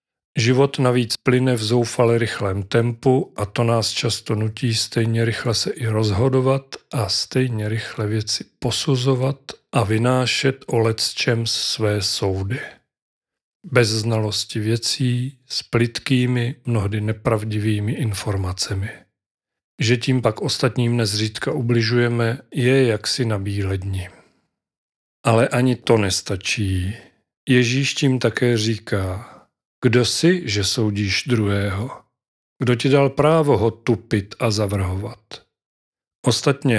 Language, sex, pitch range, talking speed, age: Czech, male, 110-125 Hz, 115 wpm, 40-59